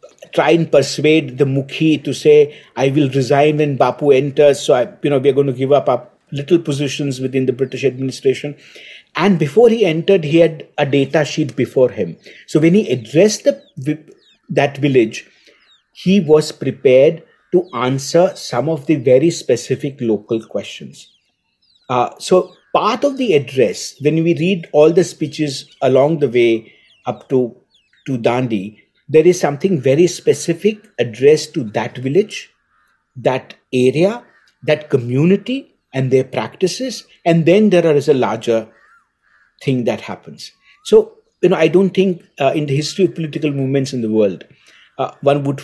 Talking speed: 160 wpm